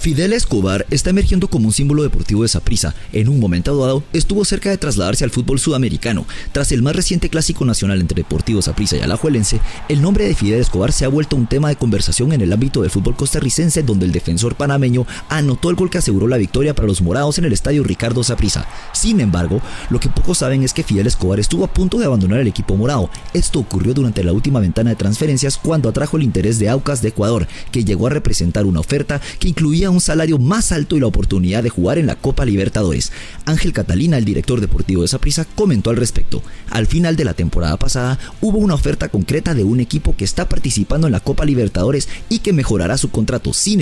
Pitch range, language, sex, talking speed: 105-150 Hz, English, male, 220 wpm